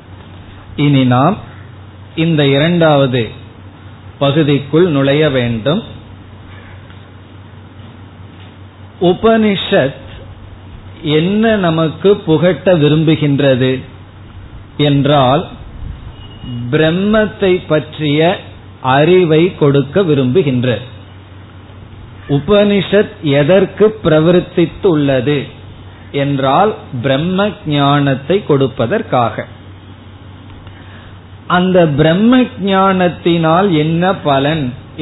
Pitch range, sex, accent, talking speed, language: 105-160 Hz, male, native, 50 wpm, Tamil